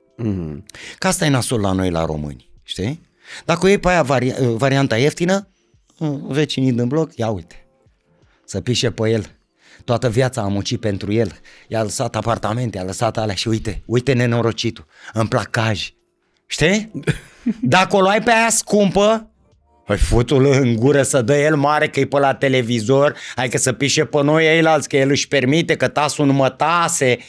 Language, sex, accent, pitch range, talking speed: Romanian, male, native, 120-165 Hz, 180 wpm